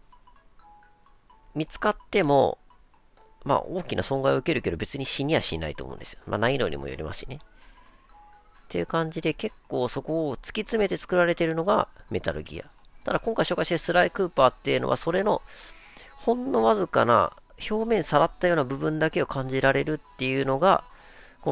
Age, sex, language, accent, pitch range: 40-59, female, Japanese, native, 135-200 Hz